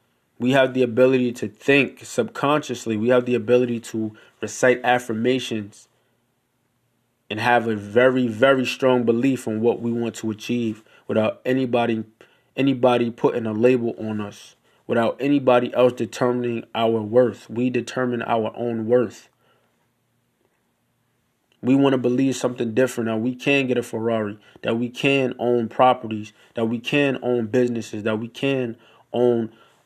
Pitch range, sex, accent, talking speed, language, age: 110-125 Hz, male, American, 145 wpm, English, 20-39